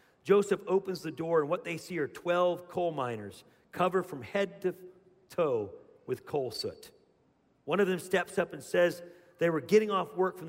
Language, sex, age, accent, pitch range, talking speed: English, male, 40-59, American, 140-180 Hz, 190 wpm